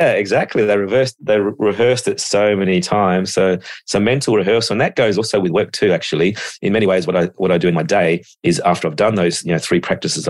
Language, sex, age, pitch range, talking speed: English, male, 30-49, 85-95 Hz, 250 wpm